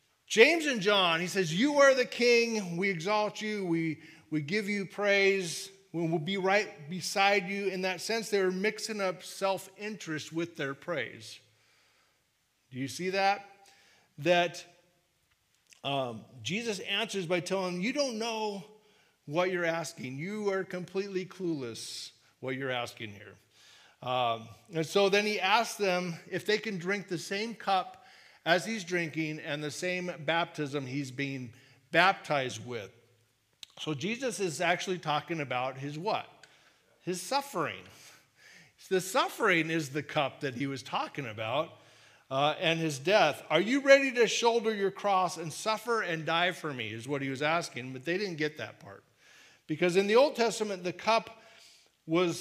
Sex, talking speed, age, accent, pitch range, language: male, 160 wpm, 40-59, American, 145-200 Hz, English